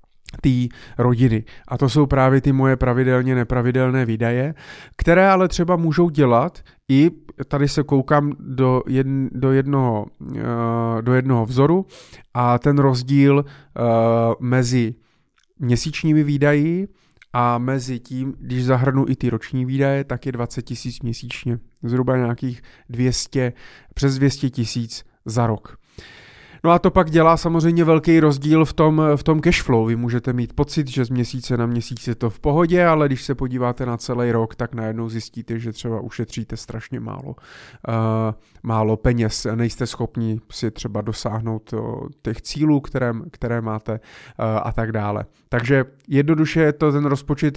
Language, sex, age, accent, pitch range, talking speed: Czech, male, 30-49, native, 115-140 Hz, 145 wpm